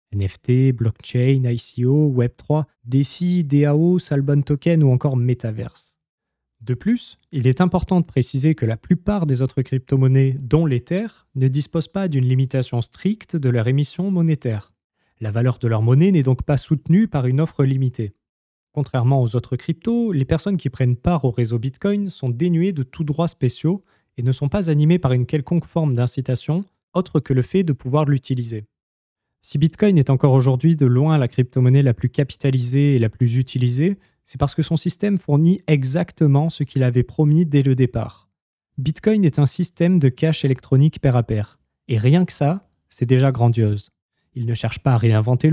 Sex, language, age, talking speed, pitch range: male, French, 20-39, 180 wpm, 125-165 Hz